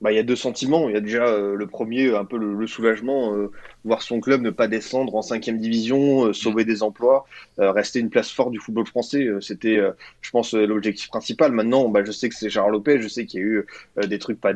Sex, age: male, 20-39